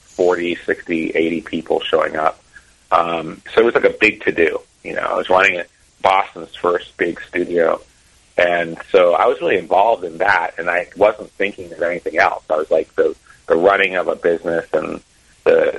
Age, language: 40-59, English